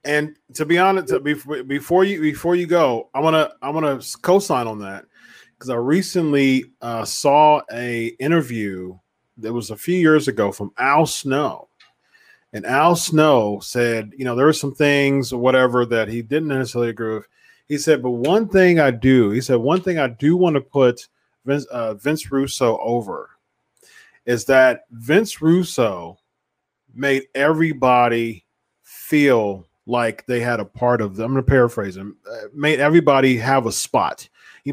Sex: male